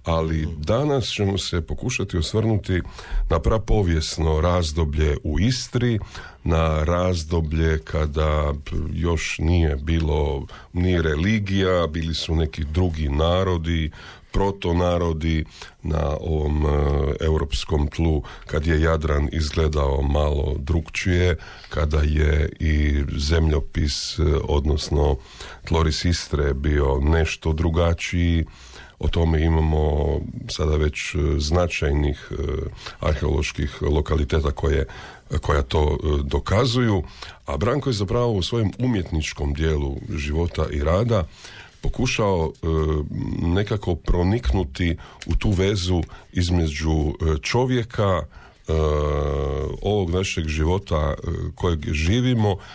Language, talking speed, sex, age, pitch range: Croatian, 95 wpm, male, 50-69, 75-95 Hz